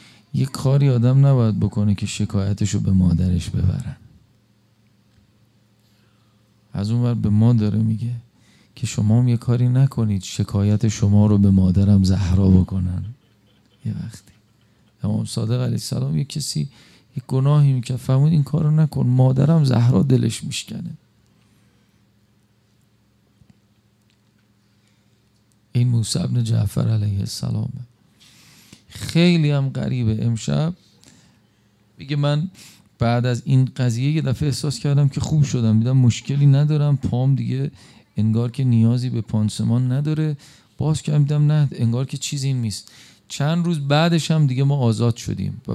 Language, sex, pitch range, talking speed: Persian, male, 105-130 Hz, 125 wpm